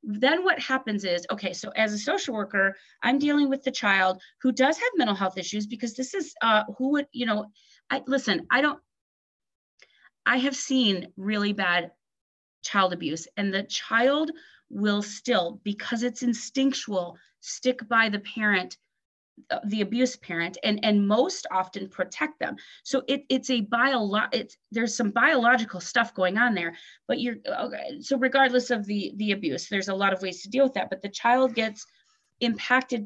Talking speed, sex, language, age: 175 wpm, female, English, 30-49